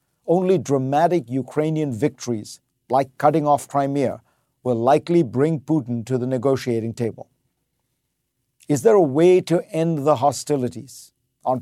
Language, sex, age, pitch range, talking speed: English, male, 50-69, 130-155 Hz, 130 wpm